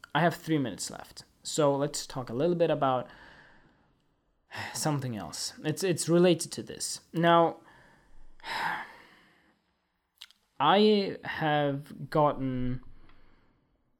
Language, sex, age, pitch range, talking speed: English, male, 20-39, 125-165 Hz, 100 wpm